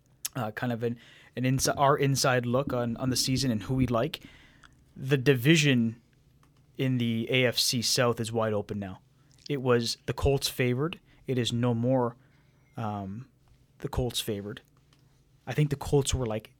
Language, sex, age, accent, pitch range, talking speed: English, male, 20-39, American, 120-140 Hz, 165 wpm